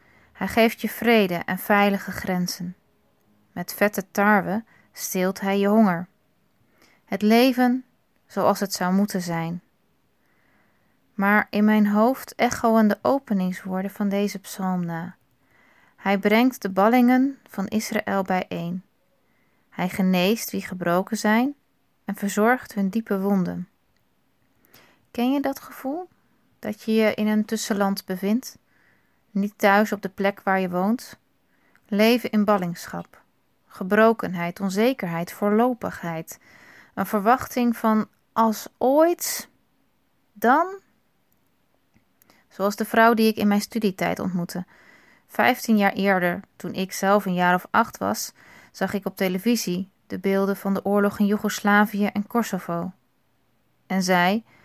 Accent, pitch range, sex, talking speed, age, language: Dutch, 185-220 Hz, female, 125 wpm, 20-39, Dutch